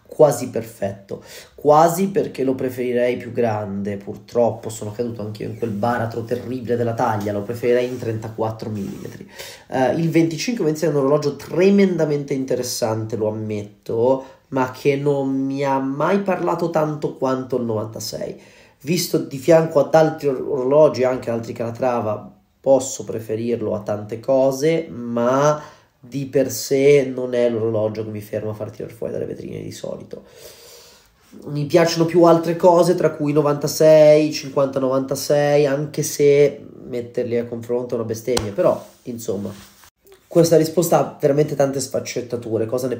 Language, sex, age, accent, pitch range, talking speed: Italian, male, 30-49, native, 120-155 Hz, 145 wpm